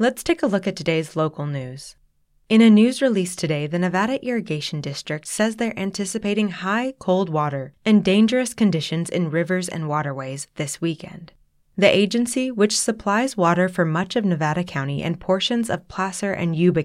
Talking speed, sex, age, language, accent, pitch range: 170 wpm, female, 20-39, English, American, 160-210 Hz